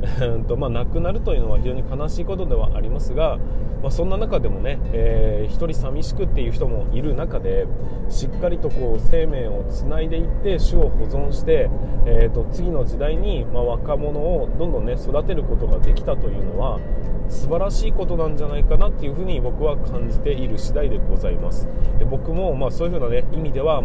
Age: 20-39